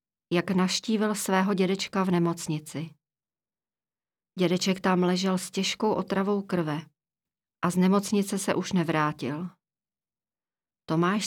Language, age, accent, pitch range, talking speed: Czech, 40-59, native, 170-205 Hz, 105 wpm